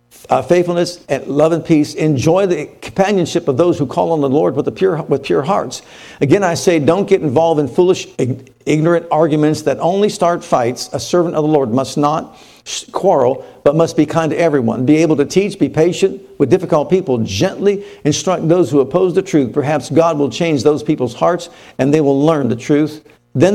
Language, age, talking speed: English, 50-69, 200 wpm